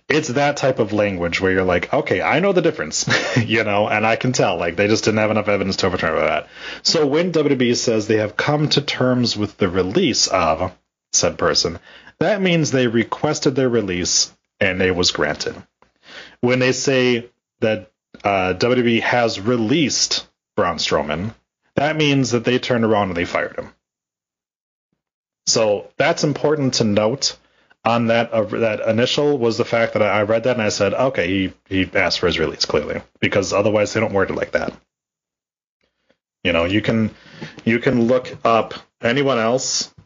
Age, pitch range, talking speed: 30-49, 100-130 Hz, 180 wpm